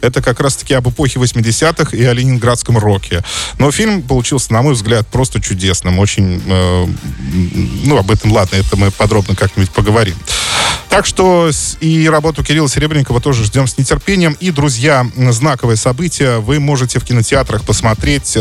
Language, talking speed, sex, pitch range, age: Russian, 155 wpm, male, 105-135 Hz, 20-39